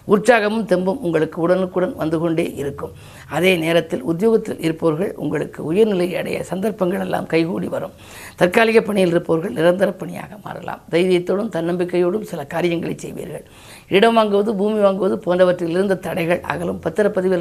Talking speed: 130 wpm